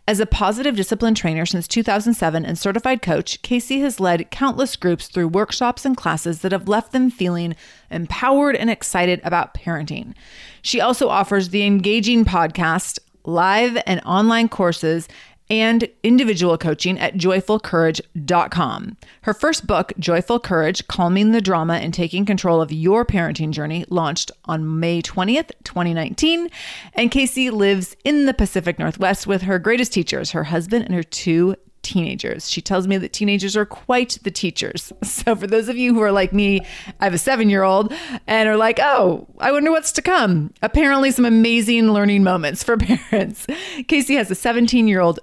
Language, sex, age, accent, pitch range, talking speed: English, female, 30-49, American, 175-235 Hz, 165 wpm